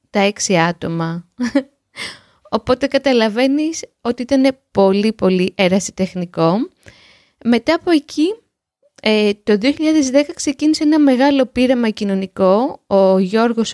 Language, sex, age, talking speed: Greek, female, 20-39, 100 wpm